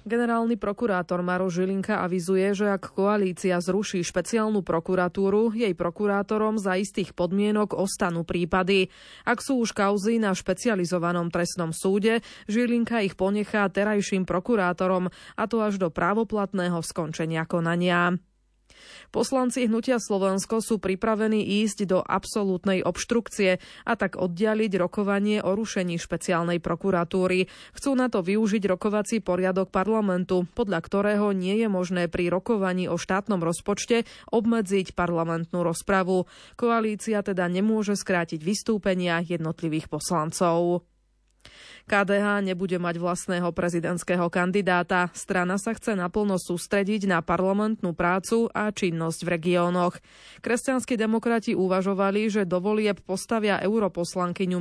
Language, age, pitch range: Slovak, 20-39, 180-215 Hz